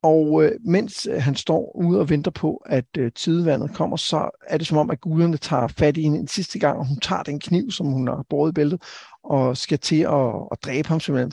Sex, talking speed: male, 230 wpm